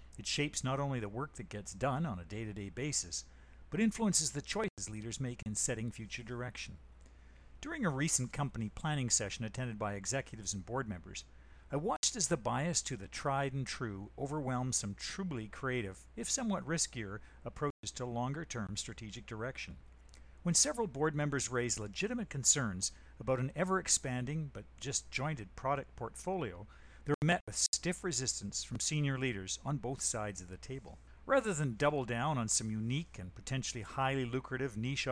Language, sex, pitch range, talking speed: English, male, 105-145 Hz, 165 wpm